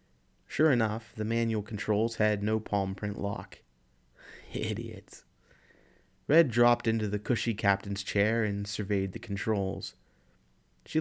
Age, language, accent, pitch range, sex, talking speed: 30-49, English, American, 100-115 Hz, male, 125 wpm